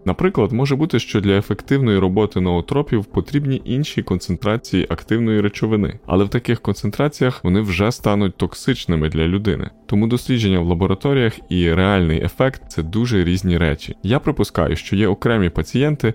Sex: male